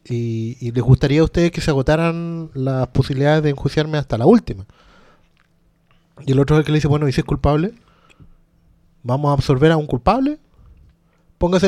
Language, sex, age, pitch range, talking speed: Spanish, male, 30-49, 135-165 Hz, 185 wpm